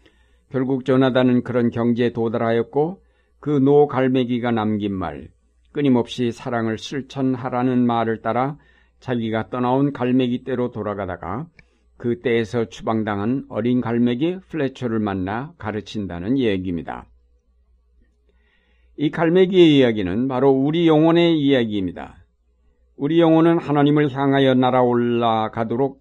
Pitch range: 100-130 Hz